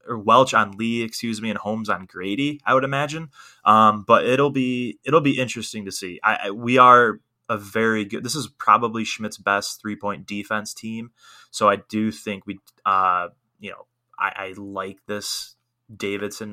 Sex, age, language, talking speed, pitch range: male, 20-39, English, 180 wpm, 95-115 Hz